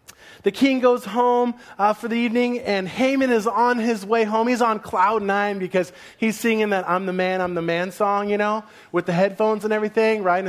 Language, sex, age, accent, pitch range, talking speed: English, male, 30-49, American, 175-235 Hz, 215 wpm